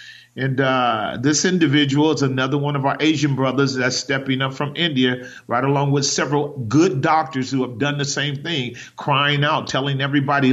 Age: 40-59